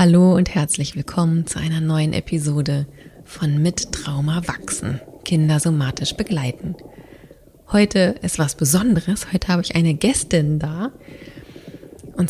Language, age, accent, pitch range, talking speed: German, 30-49, German, 145-180 Hz, 125 wpm